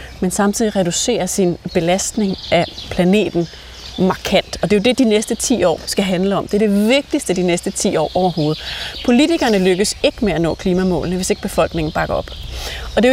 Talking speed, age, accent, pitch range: 200 wpm, 30-49, native, 185-235 Hz